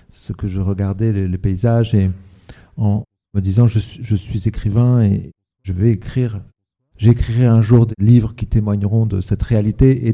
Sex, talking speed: male, 180 wpm